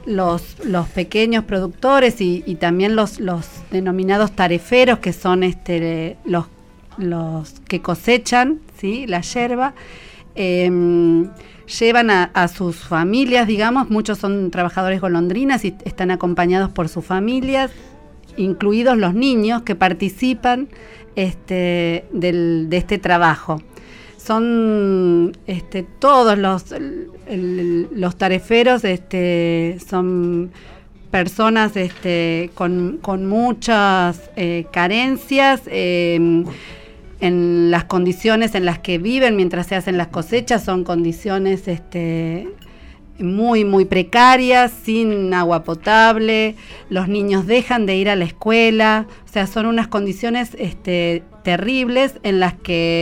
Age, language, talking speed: 40-59, Spanish, 110 wpm